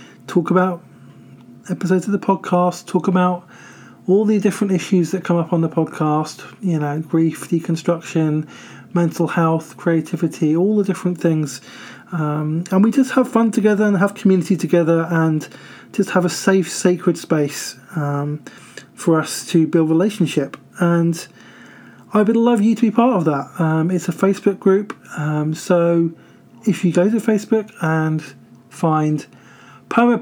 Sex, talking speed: male, 155 wpm